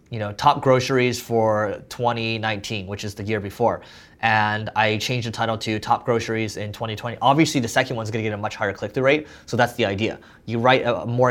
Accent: American